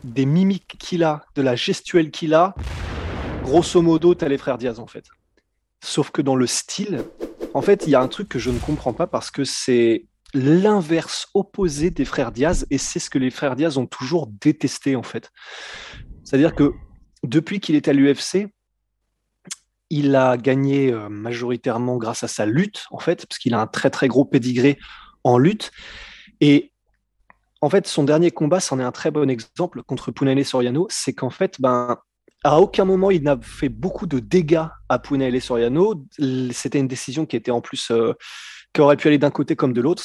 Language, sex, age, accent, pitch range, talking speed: French, male, 20-39, French, 125-165 Hz, 200 wpm